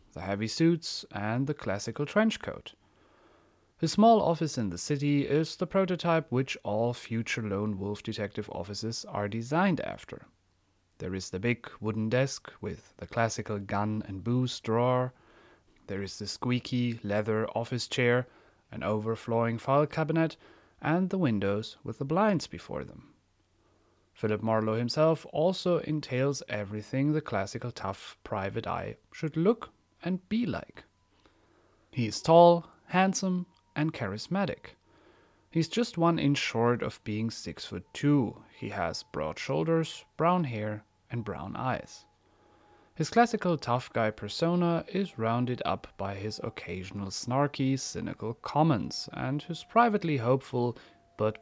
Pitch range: 105-160 Hz